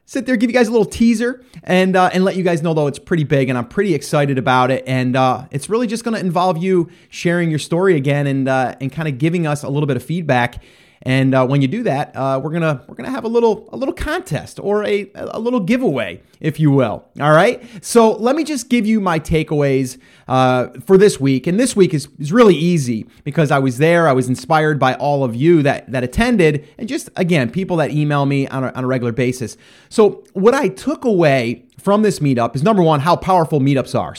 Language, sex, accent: English, male, American